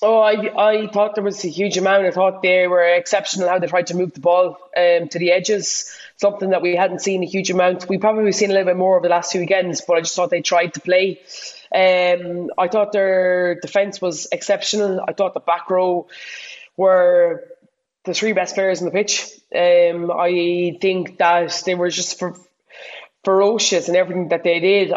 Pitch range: 175-195 Hz